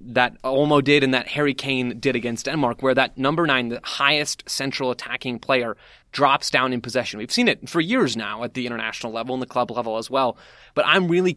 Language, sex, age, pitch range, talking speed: English, male, 20-39, 125-150 Hz, 220 wpm